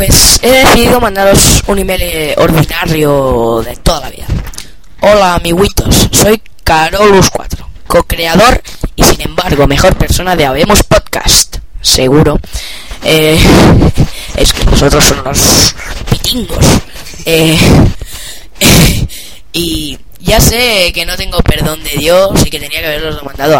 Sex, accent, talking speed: female, Spanish, 125 wpm